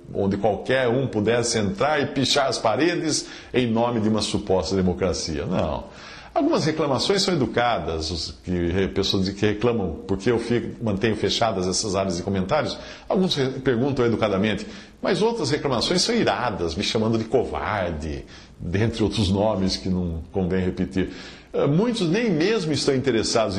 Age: 50-69